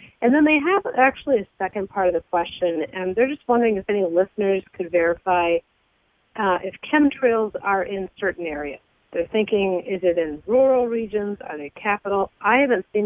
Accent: American